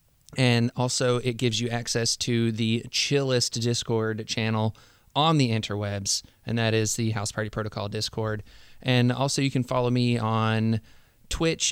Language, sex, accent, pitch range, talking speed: English, male, American, 115-130 Hz, 155 wpm